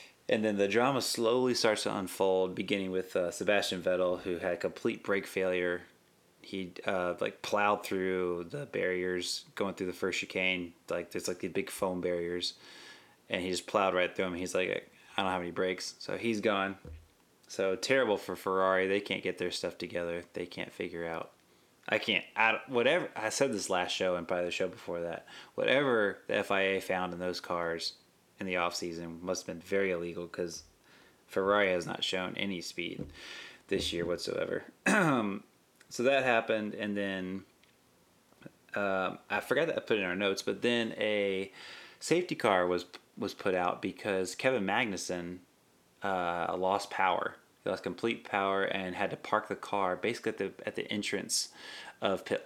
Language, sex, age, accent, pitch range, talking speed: English, male, 20-39, American, 90-100 Hz, 175 wpm